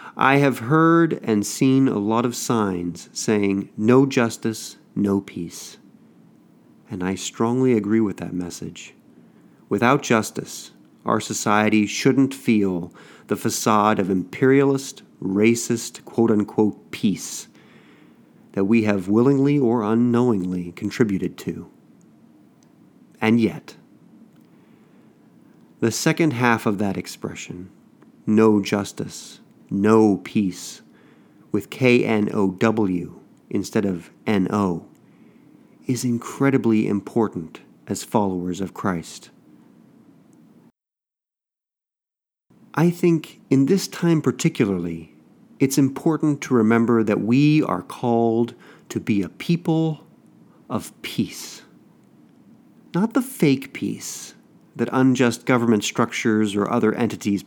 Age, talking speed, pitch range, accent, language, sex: 40-59, 100 wpm, 100-135 Hz, American, English, male